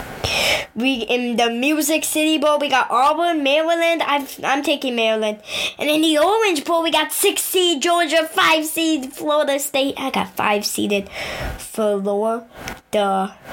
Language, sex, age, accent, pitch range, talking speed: English, female, 10-29, American, 240-320 Hz, 145 wpm